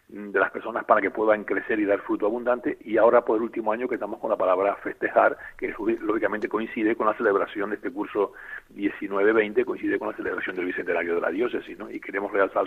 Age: 40-59